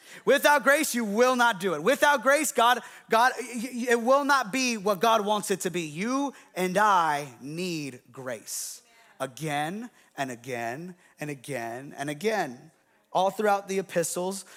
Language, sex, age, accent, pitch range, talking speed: English, male, 30-49, American, 175-215 Hz, 150 wpm